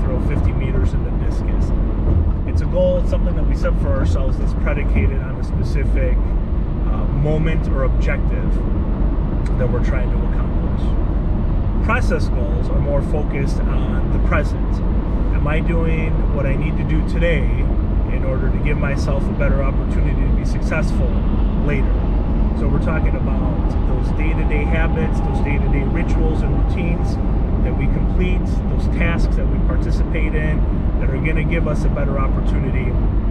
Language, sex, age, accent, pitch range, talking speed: English, male, 30-49, American, 70-80 Hz, 155 wpm